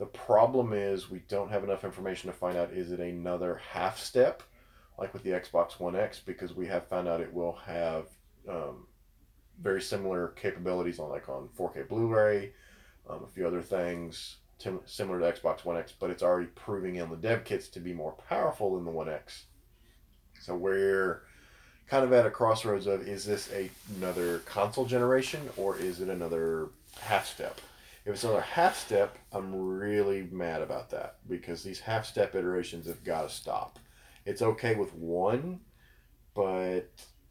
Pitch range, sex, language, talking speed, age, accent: 85-105 Hz, male, English, 175 wpm, 30-49, American